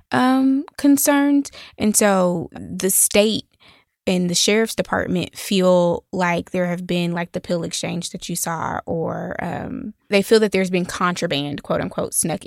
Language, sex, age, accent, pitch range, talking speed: English, female, 20-39, American, 170-200 Hz, 160 wpm